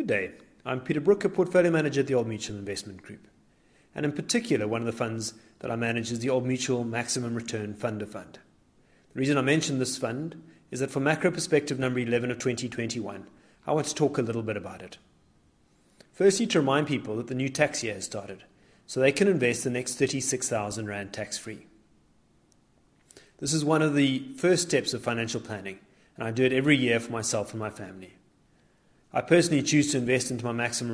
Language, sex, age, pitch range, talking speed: English, male, 30-49, 110-150 Hz, 205 wpm